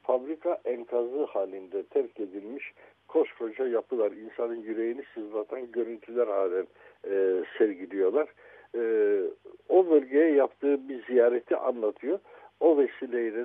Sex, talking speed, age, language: male, 105 wpm, 60-79, Turkish